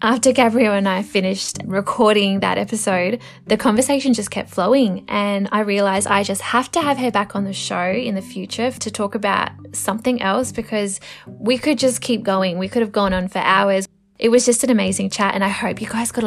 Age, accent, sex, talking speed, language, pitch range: 10-29, Australian, female, 220 wpm, English, 195-235 Hz